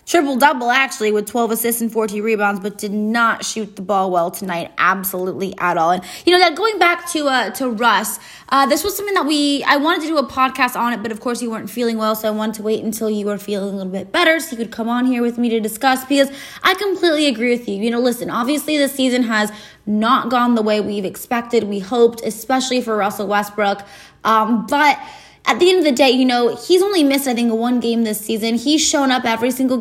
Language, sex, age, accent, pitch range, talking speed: English, female, 20-39, American, 215-265 Hz, 245 wpm